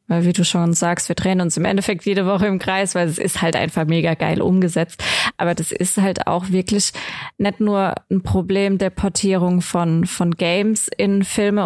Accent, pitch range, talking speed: German, 185-210 Hz, 200 wpm